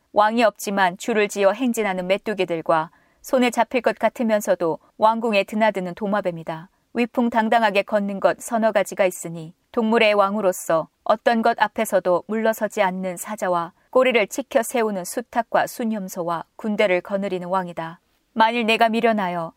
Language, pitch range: Korean, 185-225 Hz